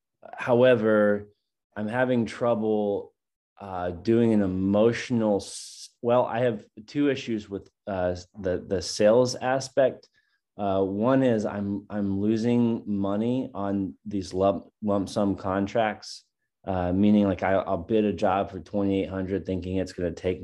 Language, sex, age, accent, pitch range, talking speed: English, male, 20-39, American, 90-105 Hz, 145 wpm